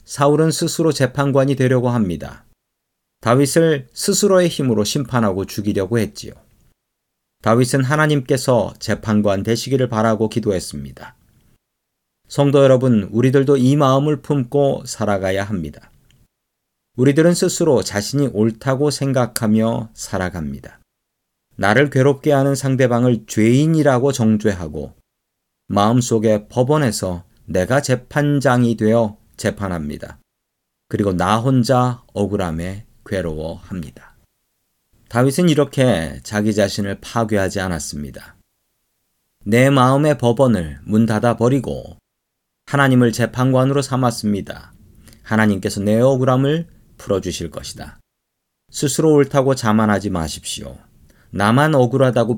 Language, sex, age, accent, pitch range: Korean, male, 40-59, native, 100-135 Hz